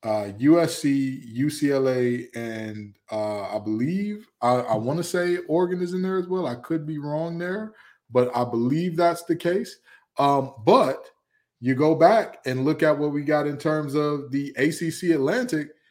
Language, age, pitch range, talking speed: English, 20-39, 135-170 Hz, 175 wpm